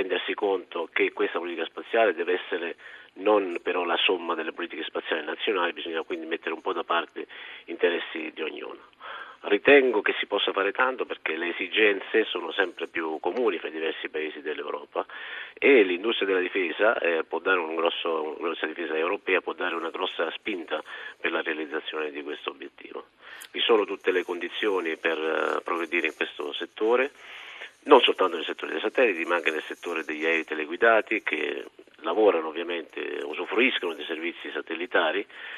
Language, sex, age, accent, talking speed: Italian, male, 50-69, native, 160 wpm